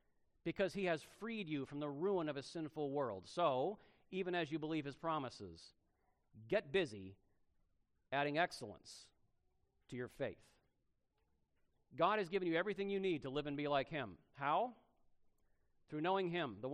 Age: 40-59